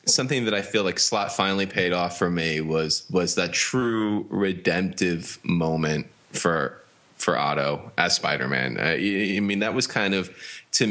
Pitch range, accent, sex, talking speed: 85-100 Hz, American, male, 170 wpm